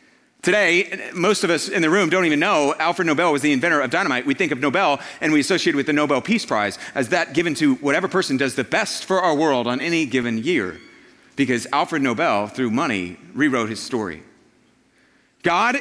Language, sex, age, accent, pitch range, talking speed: English, male, 40-59, American, 150-230 Hz, 205 wpm